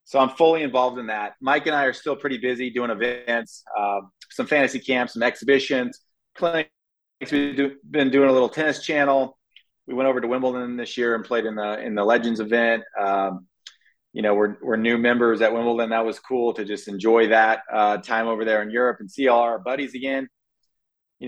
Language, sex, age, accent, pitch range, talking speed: English, male, 30-49, American, 110-130 Hz, 205 wpm